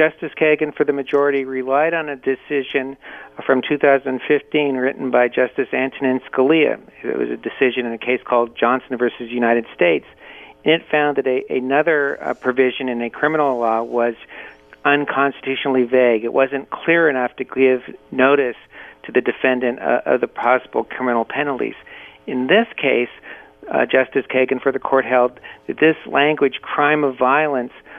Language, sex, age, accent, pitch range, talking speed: English, male, 50-69, American, 120-140 Hz, 160 wpm